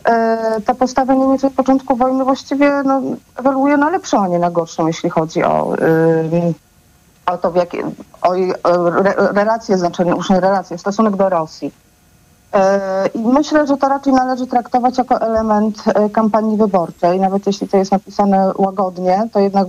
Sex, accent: female, native